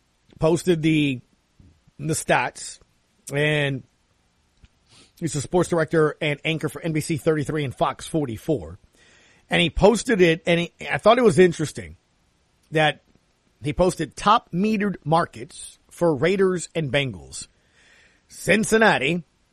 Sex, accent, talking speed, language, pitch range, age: male, American, 120 wpm, English, 120-180 Hz, 40-59